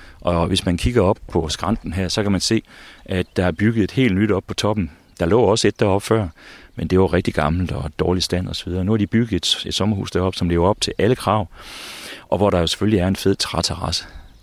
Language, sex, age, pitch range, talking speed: Danish, male, 40-59, 85-105 Hz, 245 wpm